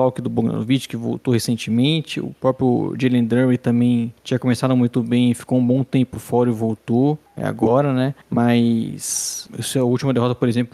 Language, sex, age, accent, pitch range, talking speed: Portuguese, male, 20-39, Brazilian, 125-145 Hz, 185 wpm